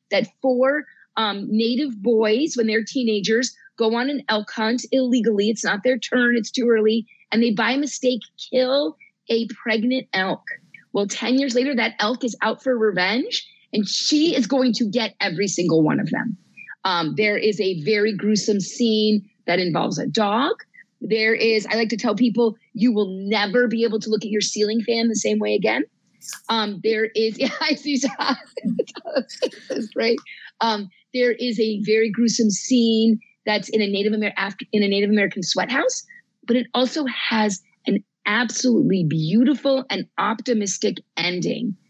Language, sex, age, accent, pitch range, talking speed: English, female, 30-49, American, 205-245 Hz, 170 wpm